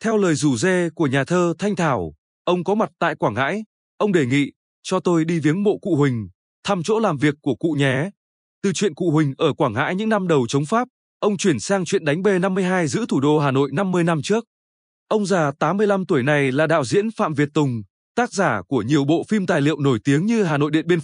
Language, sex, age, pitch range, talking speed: Vietnamese, male, 20-39, 145-195 Hz, 240 wpm